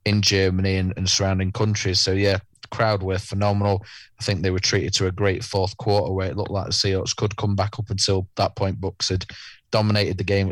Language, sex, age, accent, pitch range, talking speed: English, male, 20-39, British, 95-105 Hz, 235 wpm